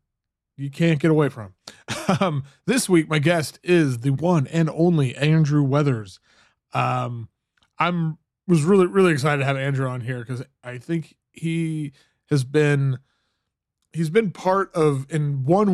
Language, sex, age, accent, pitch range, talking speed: English, male, 20-39, American, 120-155 Hz, 155 wpm